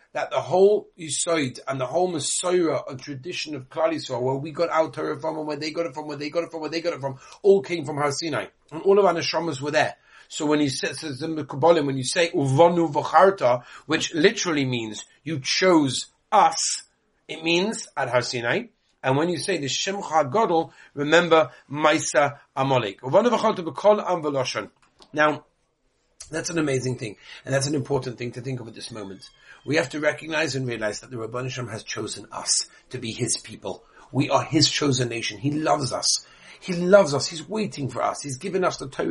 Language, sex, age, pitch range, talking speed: English, male, 40-59, 135-170 Hz, 195 wpm